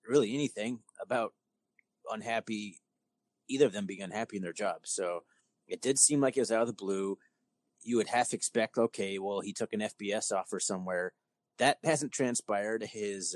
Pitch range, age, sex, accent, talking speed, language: 95-115 Hz, 30-49, male, American, 175 wpm, English